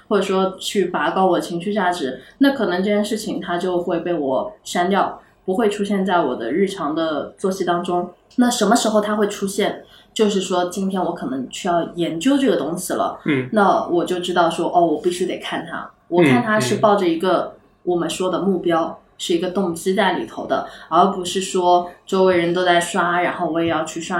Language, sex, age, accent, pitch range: Chinese, female, 20-39, native, 175-220 Hz